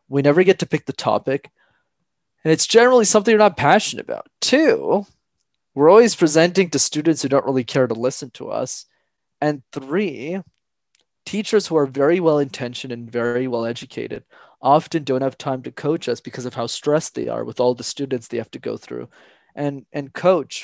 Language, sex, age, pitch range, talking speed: English, male, 20-39, 130-170 Hz, 185 wpm